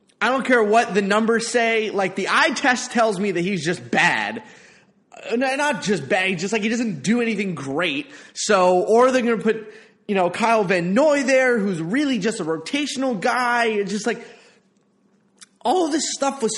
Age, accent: 20-39, American